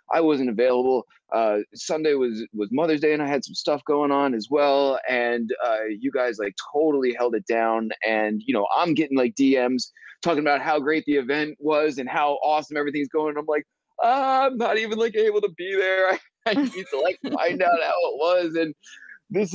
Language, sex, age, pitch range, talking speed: English, male, 20-39, 125-170 Hz, 210 wpm